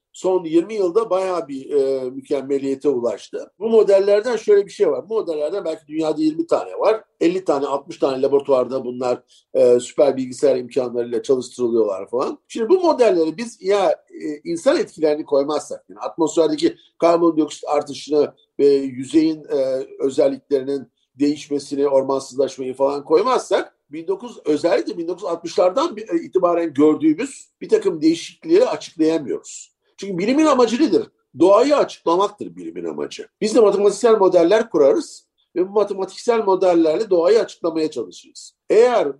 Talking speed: 130 wpm